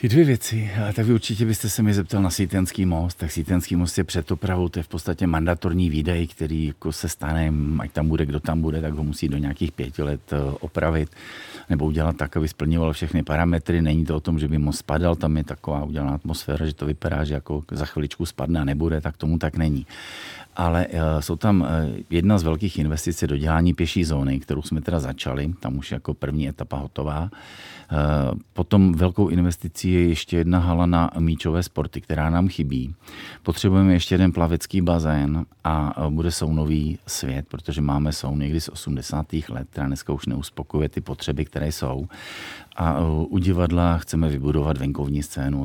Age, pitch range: 40-59, 75-85 Hz